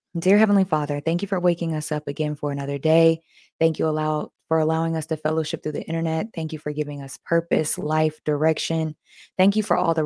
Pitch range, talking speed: 155-175 Hz, 215 wpm